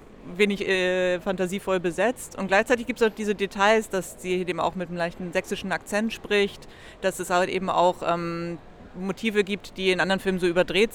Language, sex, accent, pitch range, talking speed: German, female, German, 180-210 Hz, 190 wpm